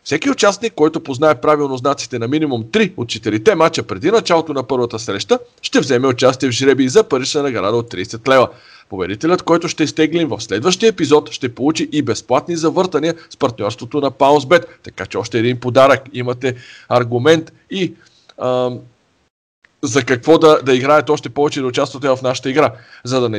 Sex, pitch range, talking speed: male, 125-160 Hz, 175 wpm